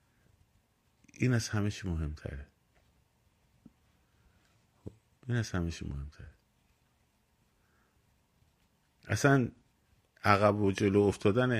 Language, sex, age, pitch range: Persian, male, 50-69, 85-110 Hz